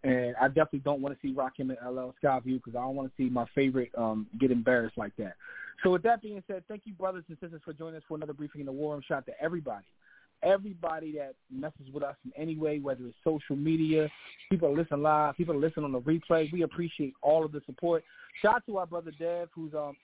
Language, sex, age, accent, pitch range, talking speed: English, male, 20-39, American, 140-170 Hz, 250 wpm